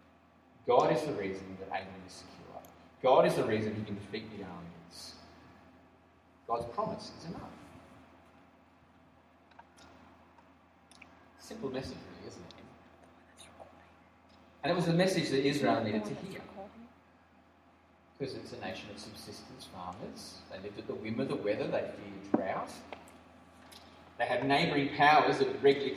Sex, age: male, 30-49